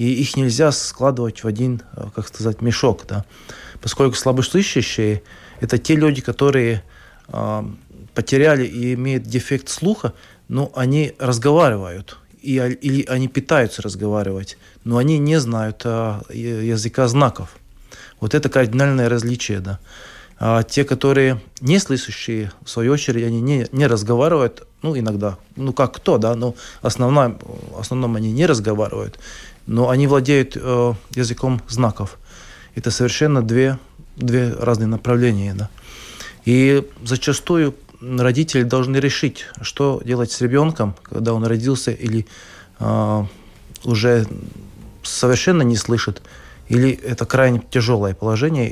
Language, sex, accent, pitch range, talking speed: Russian, male, native, 110-130 Hz, 125 wpm